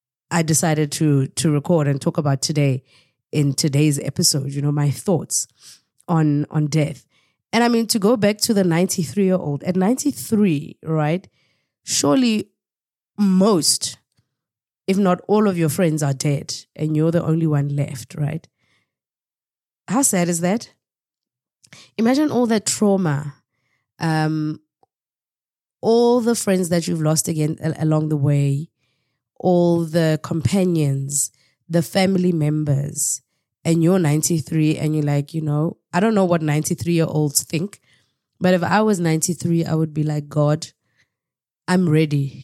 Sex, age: female, 20-39